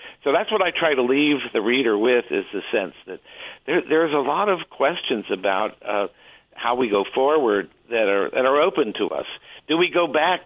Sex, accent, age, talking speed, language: male, American, 60-79, 210 wpm, English